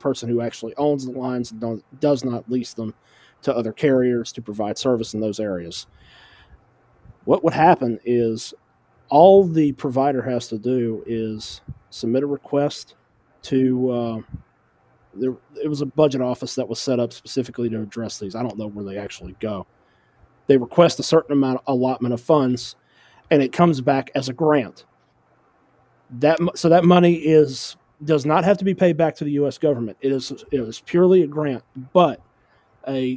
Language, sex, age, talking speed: English, male, 30-49, 175 wpm